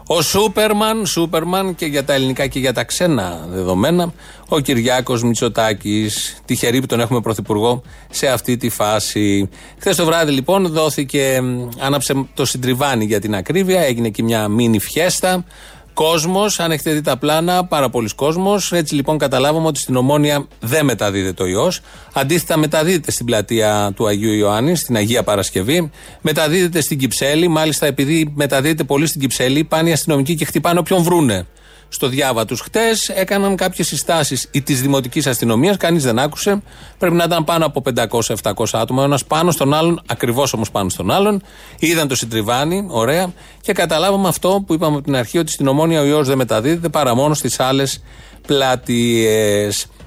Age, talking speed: 30-49, 165 wpm